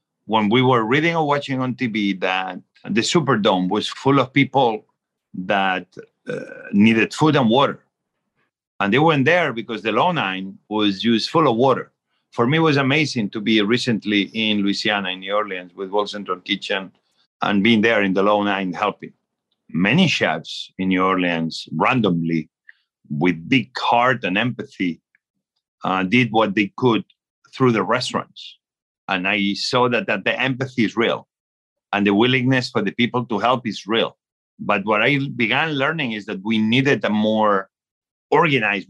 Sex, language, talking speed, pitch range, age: male, English, 170 wpm, 95-125 Hz, 50-69